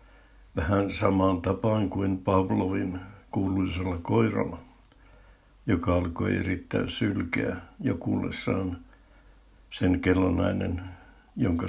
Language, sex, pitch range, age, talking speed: Finnish, male, 90-100 Hz, 60-79, 80 wpm